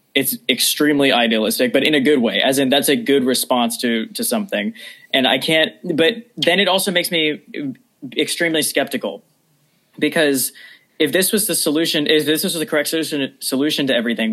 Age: 20-39